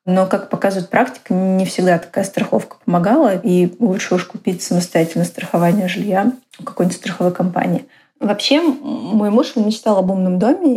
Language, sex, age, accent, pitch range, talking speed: Russian, female, 20-39, native, 190-235 Hz, 150 wpm